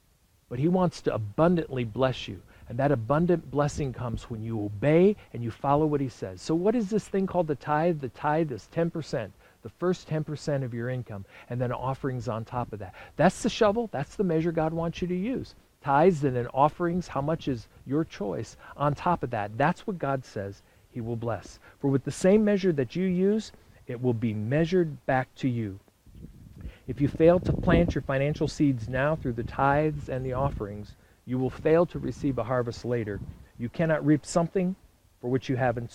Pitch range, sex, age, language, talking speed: 115-160 Hz, male, 50-69, English, 205 wpm